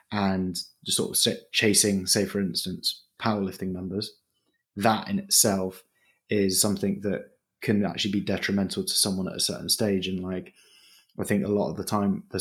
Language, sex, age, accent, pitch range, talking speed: English, male, 20-39, British, 95-110 Hz, 175 wpm